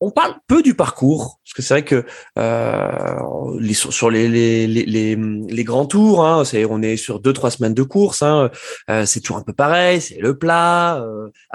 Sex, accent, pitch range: male, French, 110-170 Hz